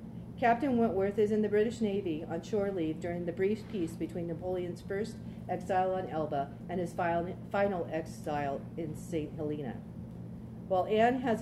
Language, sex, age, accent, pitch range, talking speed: English, female, 50-69, American, 160-205 Hz, 160 wpm